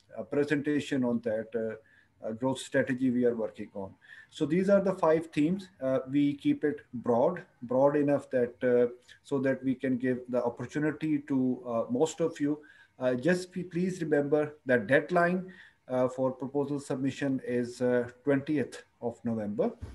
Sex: male